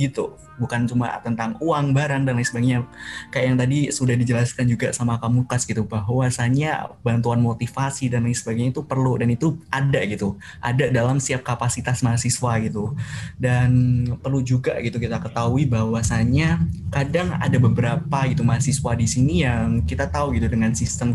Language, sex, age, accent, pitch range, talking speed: Indonesian, male, 20-39, native, 120-140 Hz, 160 wpm